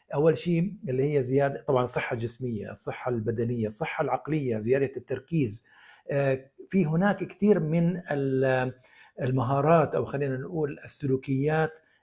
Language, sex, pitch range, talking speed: Arabic, male, 130-160 Hz, 115 wpm